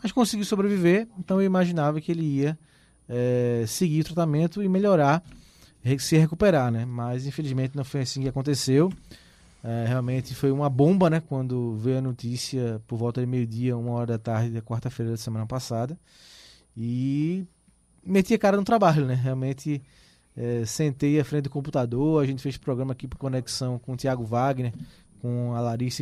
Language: Portuguese